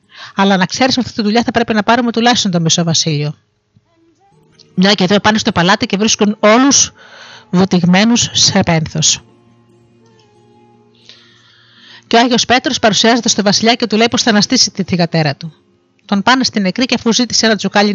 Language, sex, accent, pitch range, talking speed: Greek, female, native, 170-230 Hz, 175 wpm